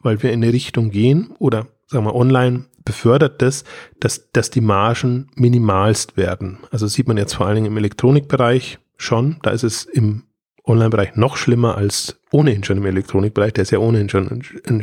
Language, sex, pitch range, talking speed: German, male, 105-130 Hz, 190 wpm